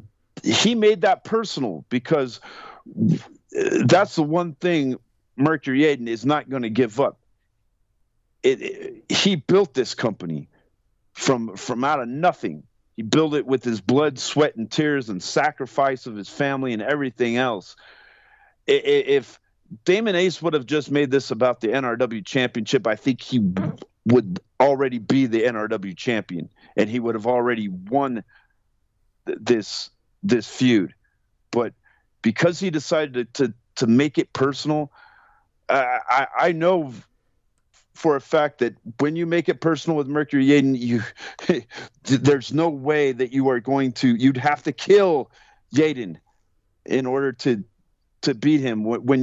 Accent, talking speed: American, 150 wpm